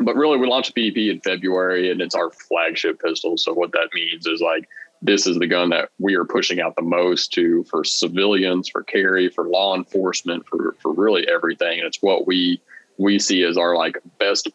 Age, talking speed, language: 20-39, 215 wpm, English